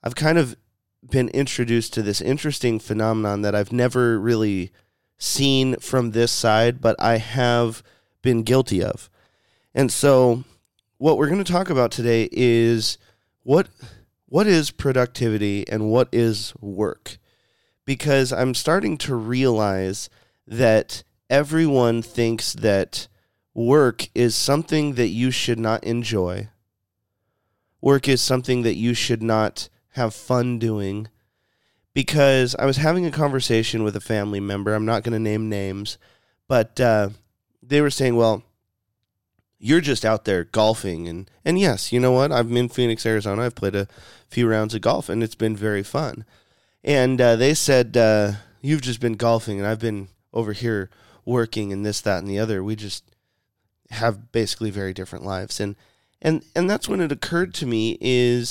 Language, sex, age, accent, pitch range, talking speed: English, male, 30-49, American, 105-125 Hz, 160 wpm